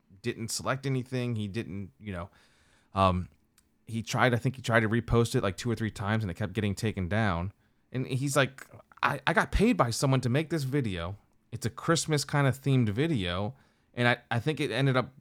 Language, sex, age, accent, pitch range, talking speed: English, male, 30-49, American, 100-125 Hz, 215 wpm